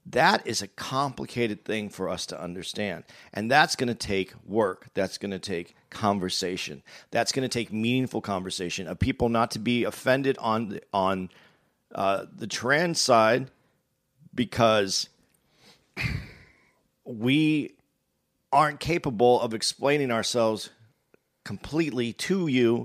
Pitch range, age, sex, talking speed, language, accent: 110-145 Hz, 40-59, male, 130 wpm, English, American